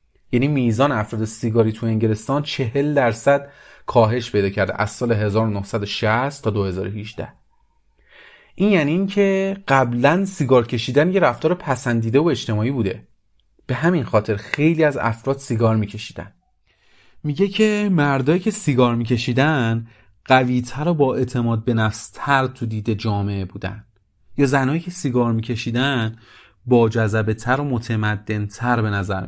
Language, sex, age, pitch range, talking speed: English, male, 30-49, 110-155 Hz, 140 wpm